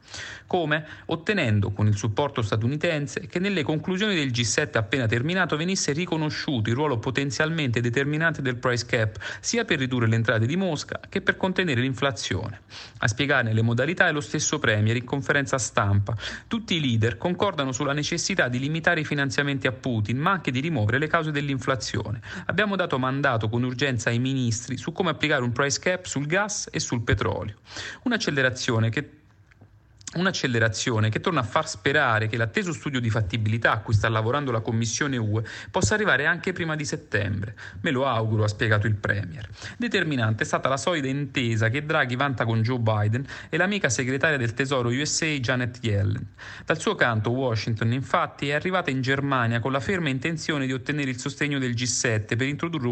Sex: male